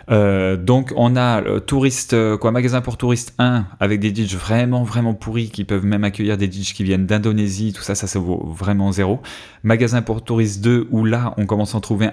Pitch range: 95-115 Hz